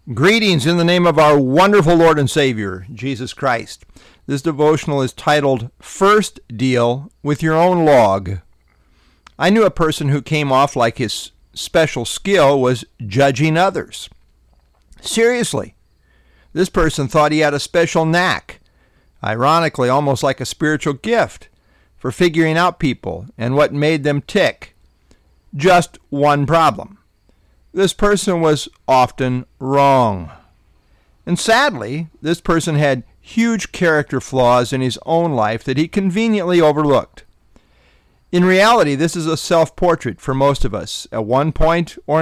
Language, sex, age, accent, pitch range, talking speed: English, male, 50-69, American, 120-165 Hz, 140 wpm